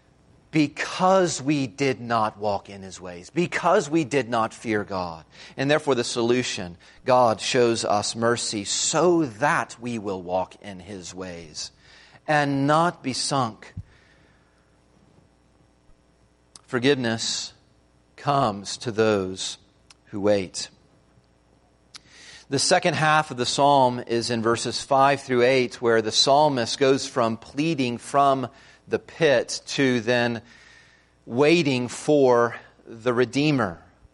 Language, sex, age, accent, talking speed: English, male, 40-59, American, 120 wpm